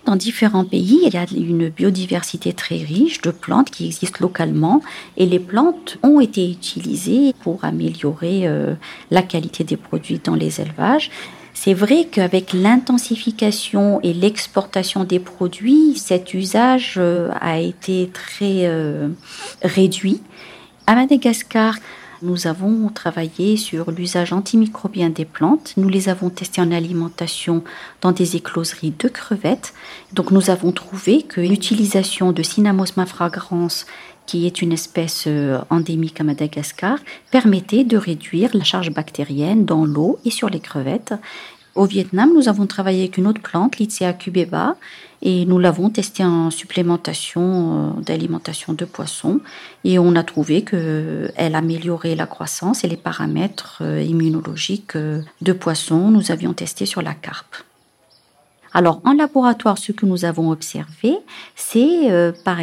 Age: 50-69